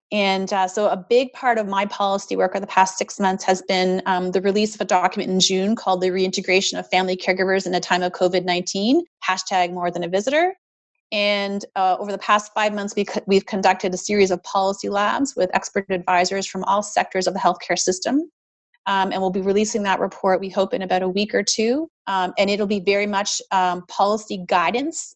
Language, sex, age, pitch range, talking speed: English, female, 30-49, 185-205 Hz, 210 wpm